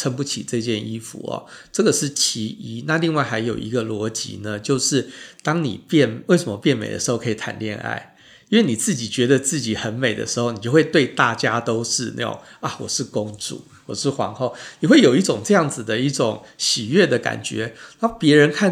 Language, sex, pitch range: Chinese, male, 115-140 Hz